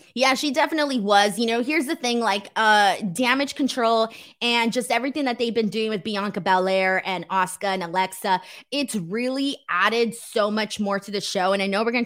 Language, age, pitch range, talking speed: English, 20-39, 205-255 Hz, 205 wpm